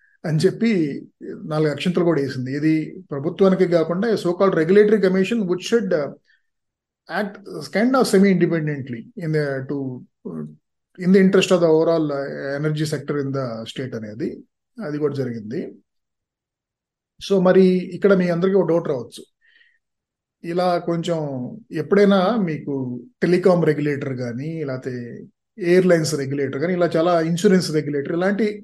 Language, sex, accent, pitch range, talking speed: Telugu, male, native, 155-200 Hz, 125 wpm